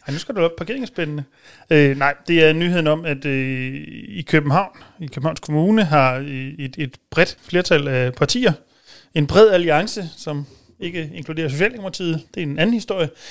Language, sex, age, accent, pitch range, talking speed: Danish, male, 30-49, native, 135-165 Hz, 170 wpm